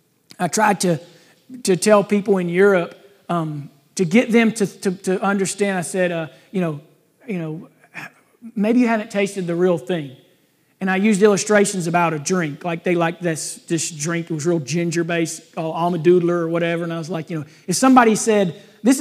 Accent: American